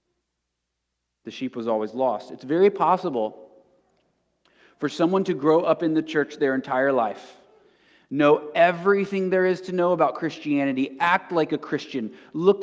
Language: English